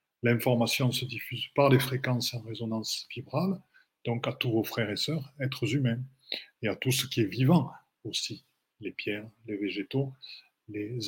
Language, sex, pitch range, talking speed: French, male, 110-130 Hz, 170 wpm